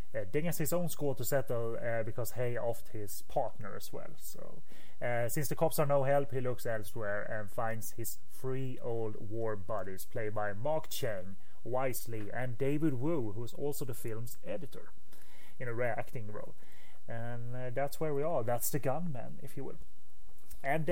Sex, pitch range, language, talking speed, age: male, 115-145 Hz, English, 185 wpm, 30-49